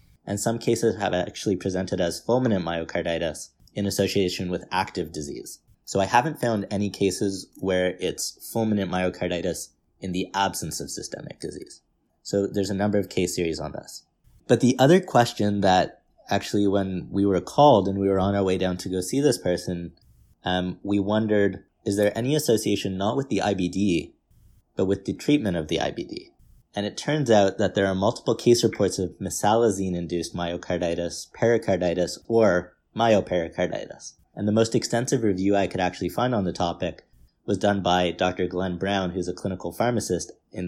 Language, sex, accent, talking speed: English, male, American, 175 wpm